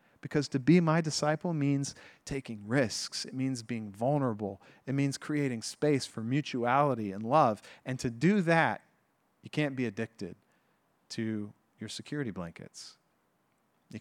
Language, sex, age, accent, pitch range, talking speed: English, male, 40-59, American, 120-150 Hz, 140 wpm